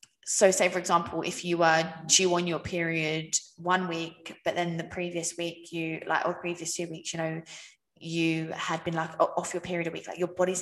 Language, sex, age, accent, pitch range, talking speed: English, female, 20-39, British, 165-195 Hz, 215 wpm